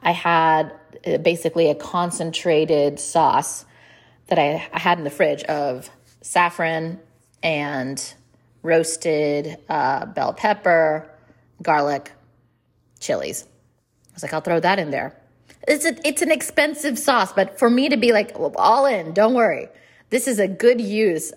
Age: 30-49